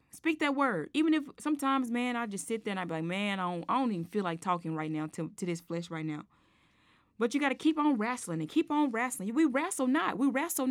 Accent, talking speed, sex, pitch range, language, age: American, 270 wpm, female, 220-315 Hz, English, 20-39